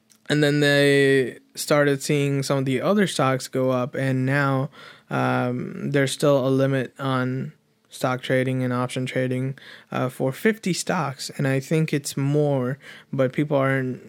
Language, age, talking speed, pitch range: English, 20-39, 160 wpm, 135-150 Hz